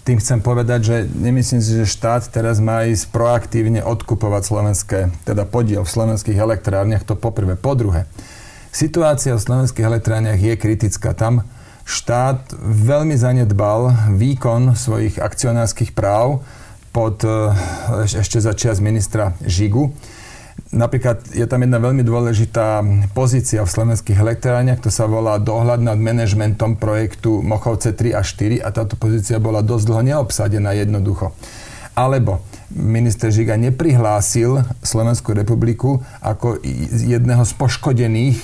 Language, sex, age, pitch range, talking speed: Slovak, male, 40-59, 110-125 Hz, 125 wpm